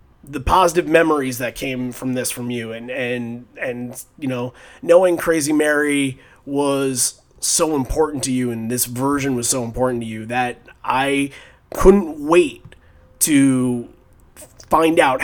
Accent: American